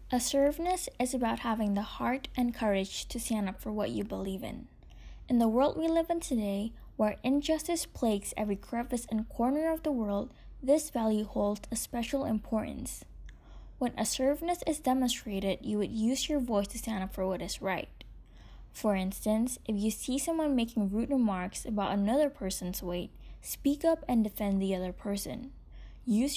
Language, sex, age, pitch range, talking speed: English, female, 10-29, 200-260 Hz, 175 wpm